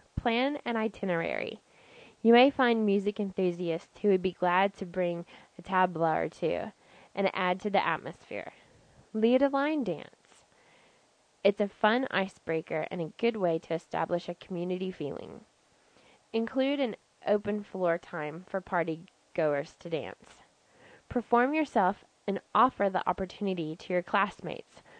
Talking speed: 140 wpm